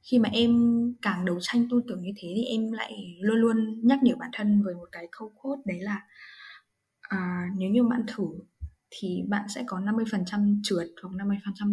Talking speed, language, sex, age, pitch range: 220 wpm, Vietnamese, female, 10-29, 185-235 Hz